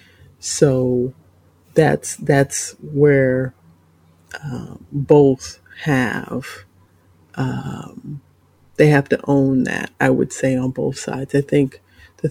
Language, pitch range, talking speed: English, 95-140 Hz, 105 wpm